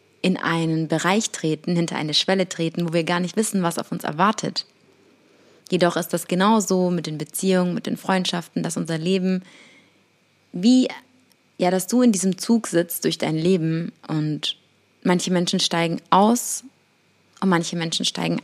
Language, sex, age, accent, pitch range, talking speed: English, female, 20-39, German, 165-190 Hz, 165 wpm